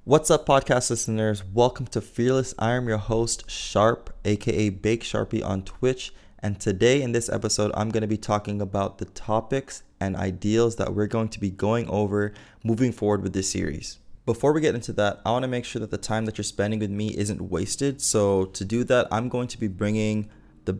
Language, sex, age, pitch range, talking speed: English, male, 20-39, 100-115 Hz, 215 wpm